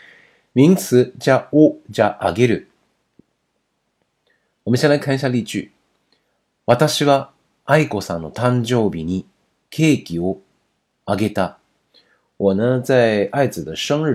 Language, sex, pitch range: Chinese, male, 100-135 Hz